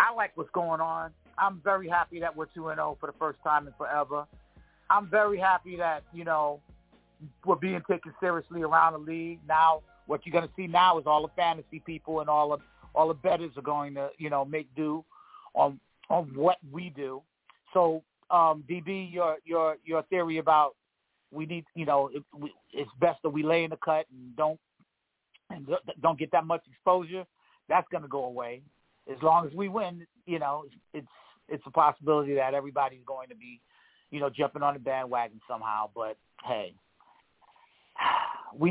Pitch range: 140-180 Hz